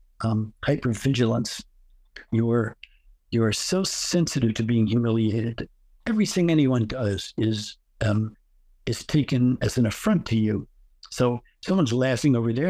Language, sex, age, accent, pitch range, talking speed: English, male, 60-79, American, 110-135 Hz, 130 wpm